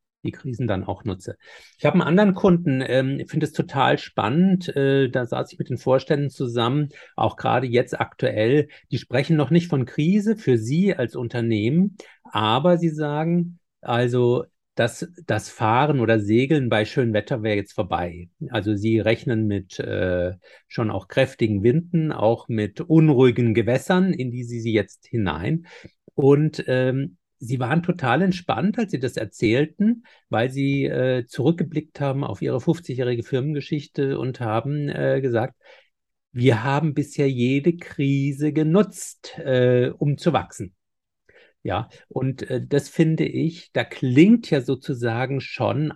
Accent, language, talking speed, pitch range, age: German, English, 150 wpm, 120-155 Hz, 50-69